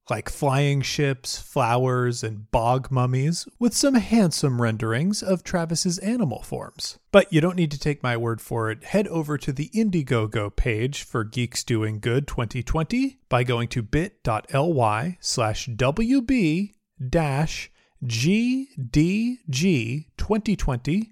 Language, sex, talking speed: English, male, 120 wpm